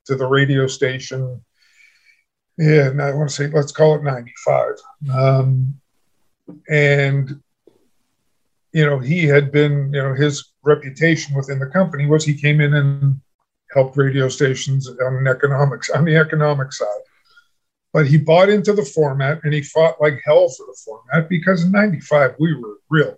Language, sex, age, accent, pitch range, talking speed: English, male, 50-69, American, 135-155 Hz, 165 wpm